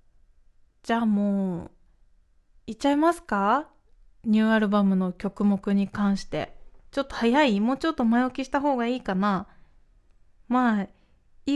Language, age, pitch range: Japanese, 20-39, 195-280 Hz